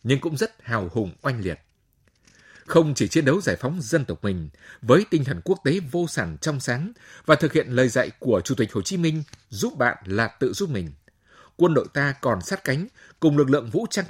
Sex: male